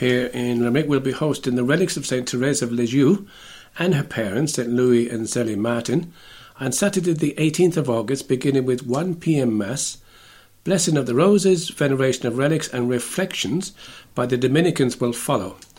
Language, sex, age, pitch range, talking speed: English, male, 60-79, 120-145 Hz, 175 wpm